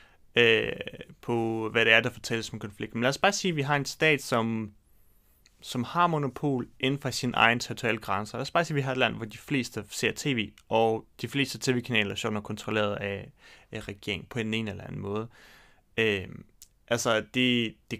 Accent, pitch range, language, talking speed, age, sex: native, 110-130 Hz, Danish, 205 wpm, 30-49, male